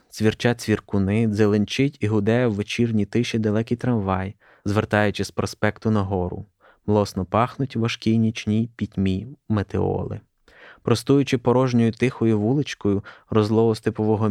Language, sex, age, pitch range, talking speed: Ukrainian, male, 20-39, 105-115 Hz, 110 wpm